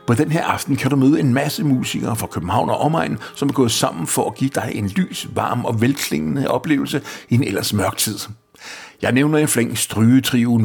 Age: 60-79